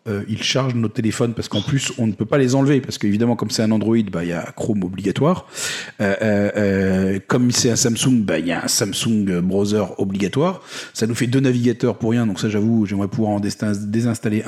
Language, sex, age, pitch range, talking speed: French, male, 40-59, 105-130 Hz, 225 wpm